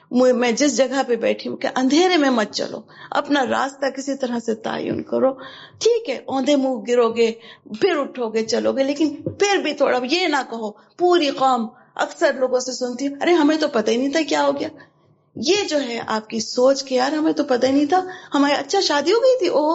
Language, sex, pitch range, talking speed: Urdu, female, 235-300 Hz, 220 wpm